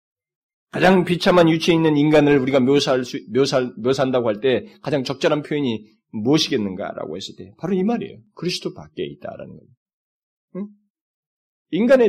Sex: male